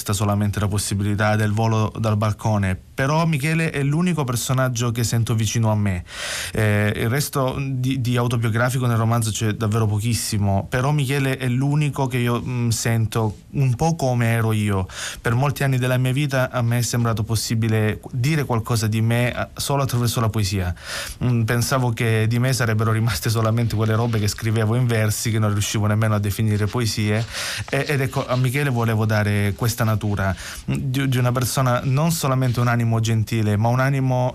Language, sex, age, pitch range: Italian, male, 30-49, 110-125 Hz